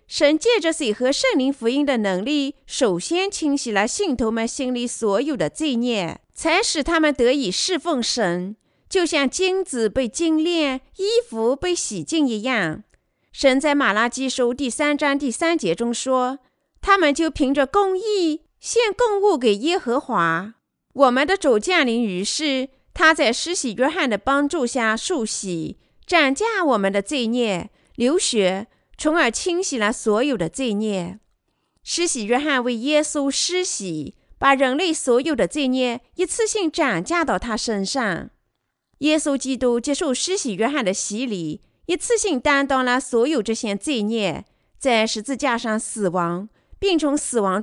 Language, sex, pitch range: Chinese, female, 225-315 Hz